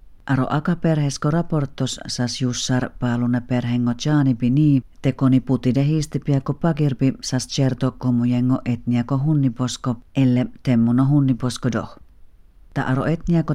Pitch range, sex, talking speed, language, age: 120-140 Hz, female, 125 wpm, Finnish, 40-59